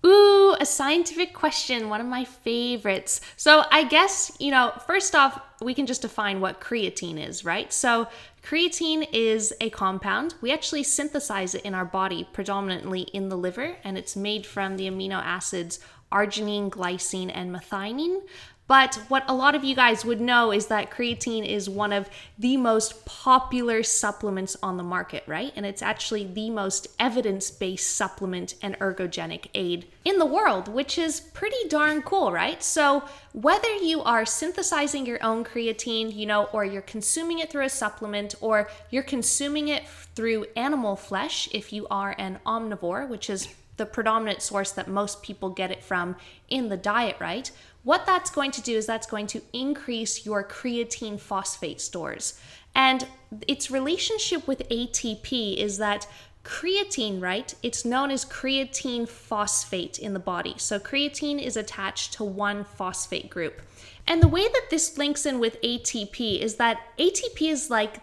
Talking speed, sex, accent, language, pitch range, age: 165 wpm, female, American, English, 200-275 Hz, 10-29